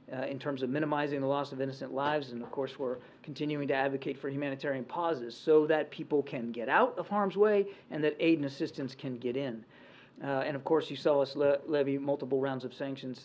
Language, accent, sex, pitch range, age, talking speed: English, American, male, 130-150 Hz, 40-59, 220 wpm